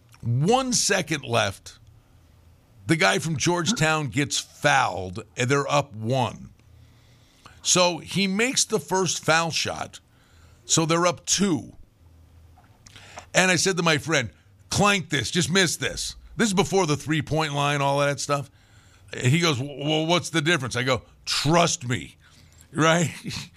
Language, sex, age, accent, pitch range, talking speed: English, male, 50-69, American, 120-175 Hz, 140 wpm